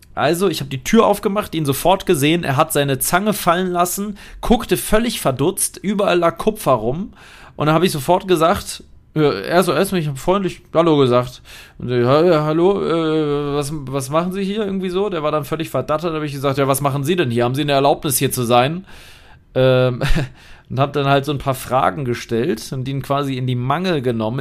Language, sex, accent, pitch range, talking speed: German, male, German, 120-165 Hz, 215 wpm